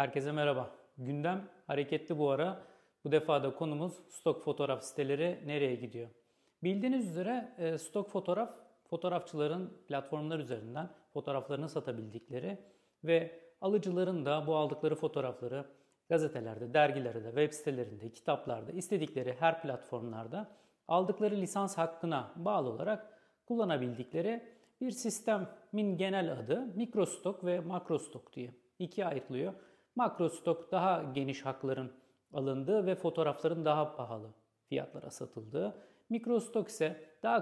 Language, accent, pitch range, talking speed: Turkish, native, 135-195 Hz, 110 wpm